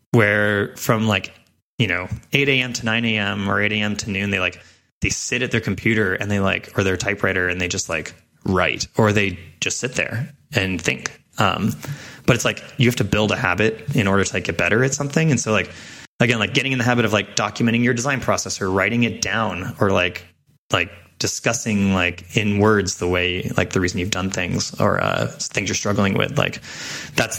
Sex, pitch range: male, 95-115 Hz